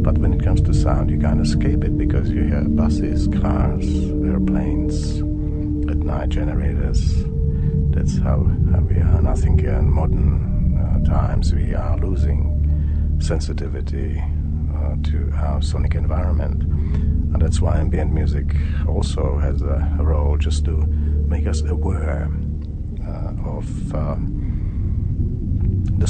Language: English